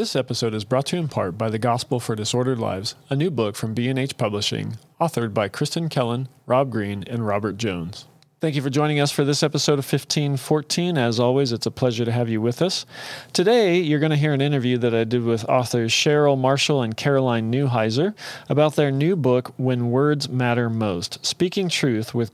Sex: male